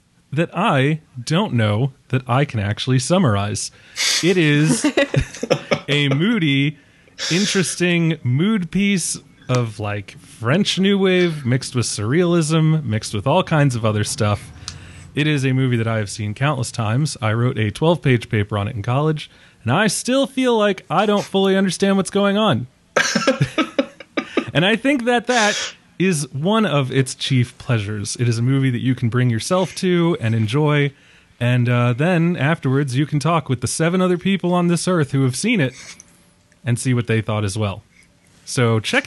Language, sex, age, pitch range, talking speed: English, male, 30-49, 120-175 Hz, 175 wpm